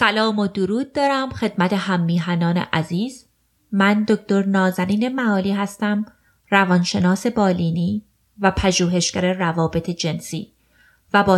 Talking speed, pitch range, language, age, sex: 105 wpm, 185-240 Hz, Persian, 30-49, female